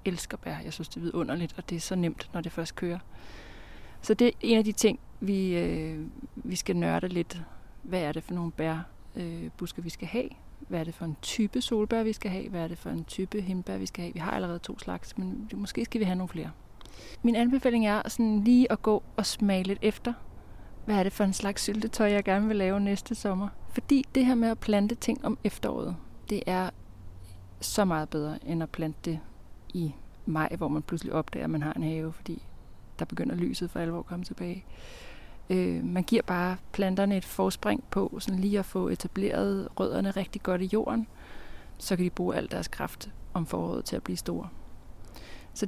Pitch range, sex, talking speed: 160-210 Hz, female, 215 wpm